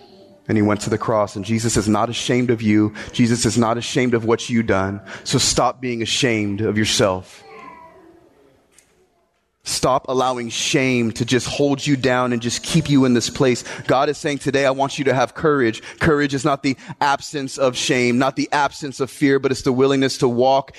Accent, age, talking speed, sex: American, 30-49, 200 wpm, male